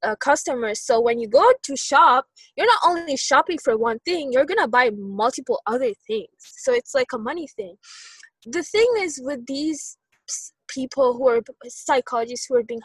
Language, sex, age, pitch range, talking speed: English, female, 20-39, 225-340 Hz, 180 wpm